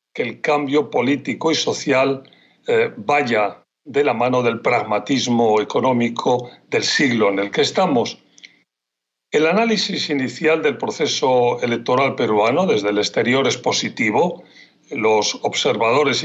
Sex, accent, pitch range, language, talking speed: male, Spanish, 110-140 Hz, Spanish, 120 wpm